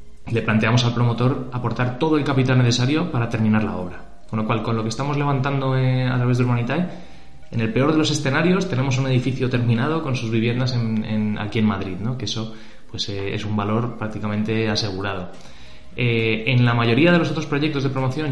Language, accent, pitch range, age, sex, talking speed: Spanish, Spanish, 105-125 Hz, 20-39, male, 210 wpm